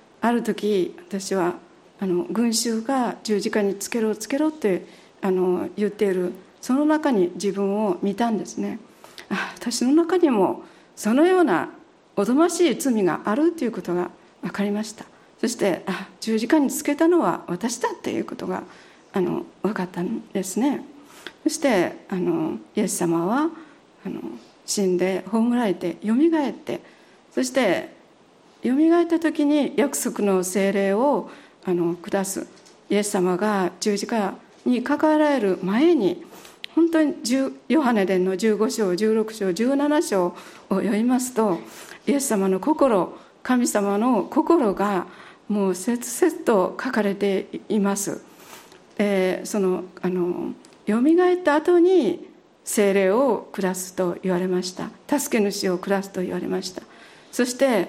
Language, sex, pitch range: Japanese, female, 190-290 Hz